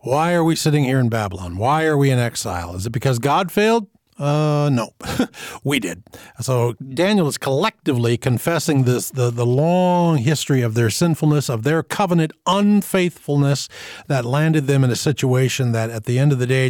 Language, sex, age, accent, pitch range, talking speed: English, male, 50-69, American, 125-175 Hz, 180 wpm